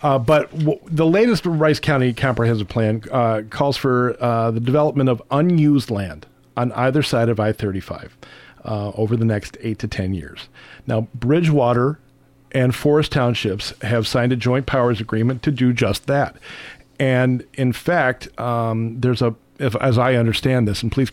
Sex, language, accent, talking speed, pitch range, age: male, English, American, 160 wpm, 115-135 Hz, 40-59